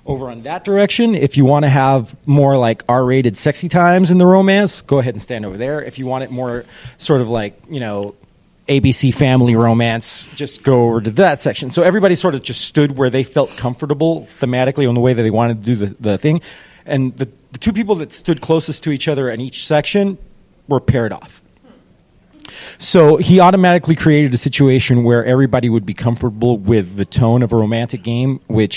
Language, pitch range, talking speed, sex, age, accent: English, 115-145 Hz, 210 wpm, male, 30-49, American